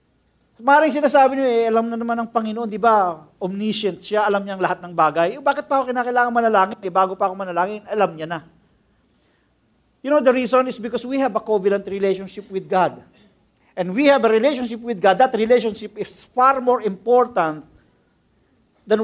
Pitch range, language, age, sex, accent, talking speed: 220-275 Hz, English, 50-69, male, Filipino, 185 wpm